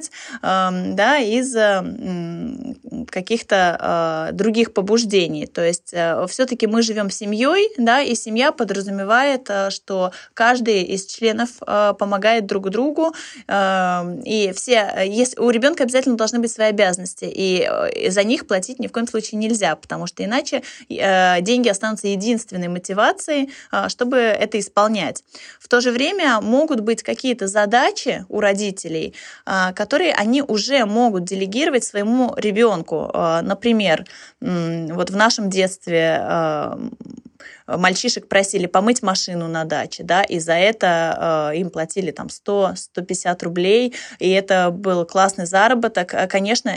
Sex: female